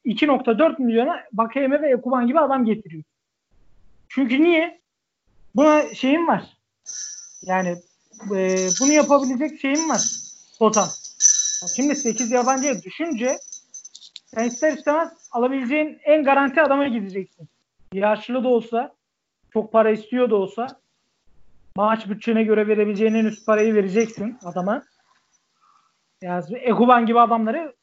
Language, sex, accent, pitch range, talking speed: Turkish, male, native, 200-275 Hz, 115 wpm